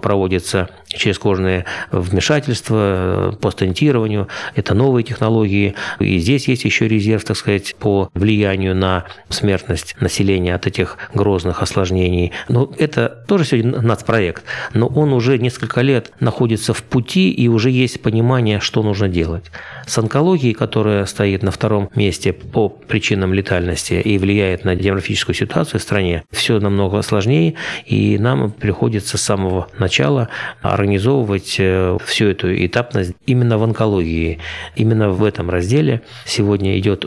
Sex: male